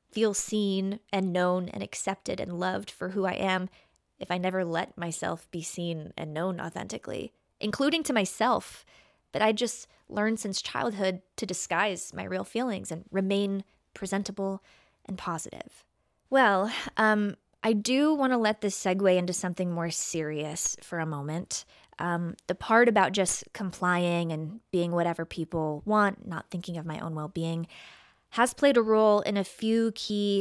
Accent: American